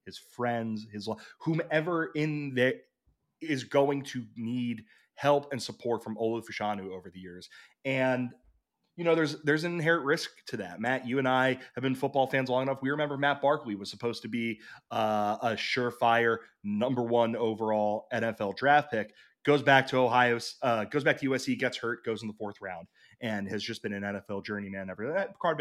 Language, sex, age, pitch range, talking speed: English, male, 20-39, 110-140 Hz, 185 wpm